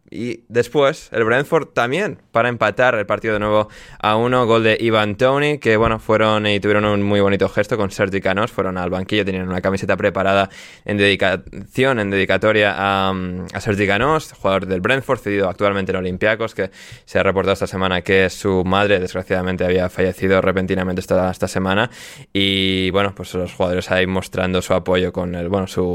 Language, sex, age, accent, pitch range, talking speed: Spanish, male, 20-39, Spanish, 95-120 Hz, 185 wpm